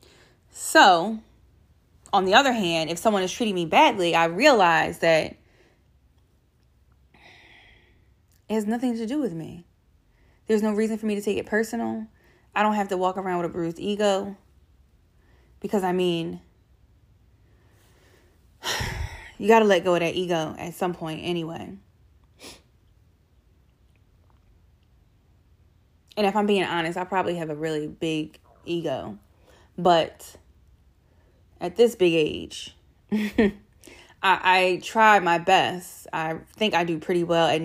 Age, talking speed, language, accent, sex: 20-39, 135 wpm, English, American, female